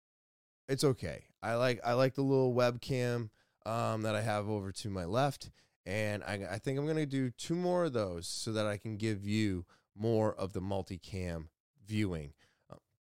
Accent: American